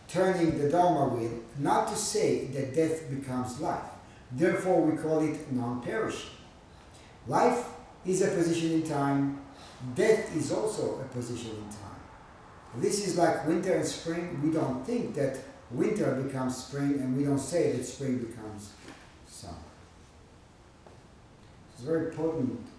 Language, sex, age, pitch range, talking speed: English, male, 50-69, 115-155 Hz, 140 wpm